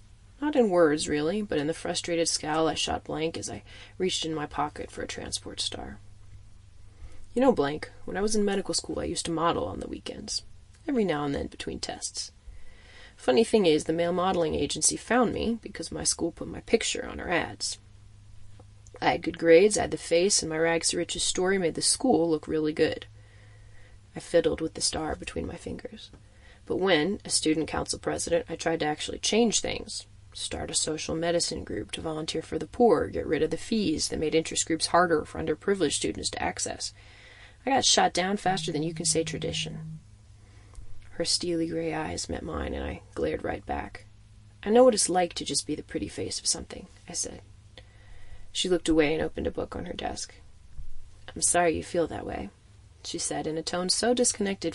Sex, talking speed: female, 200 wpm